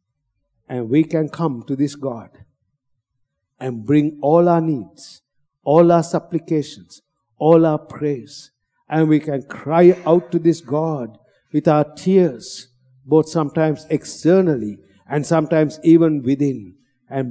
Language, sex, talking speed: English, male, 130 wpm